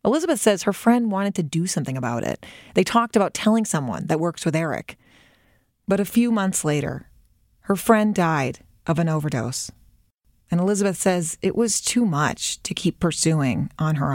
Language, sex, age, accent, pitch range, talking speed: English, female, 30-49, American, 150-210 Hz, 180 wpm